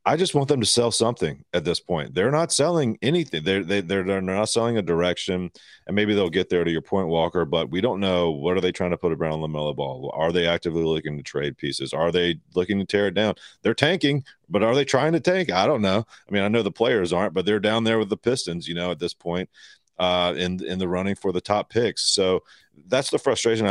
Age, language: 40-59, English